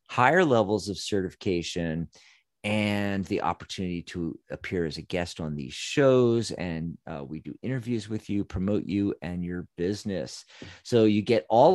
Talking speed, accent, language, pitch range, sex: 160 wpm, American, English, 95-120 Hz, male